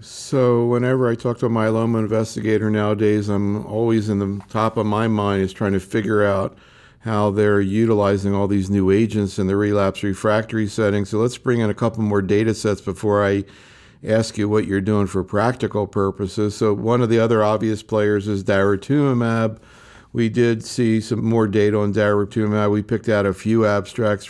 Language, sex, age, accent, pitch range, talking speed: English, male, 50-69, American, 100-110 Hz, 190 wpm